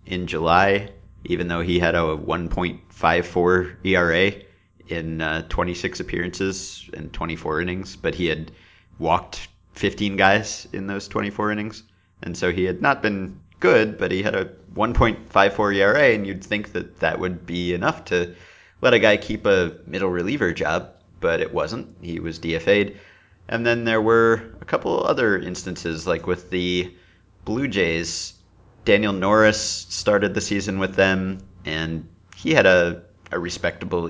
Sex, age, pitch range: male, 30-49, 85-100 Hz